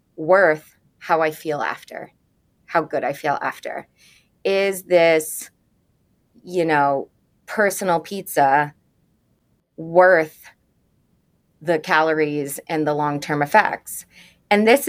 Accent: American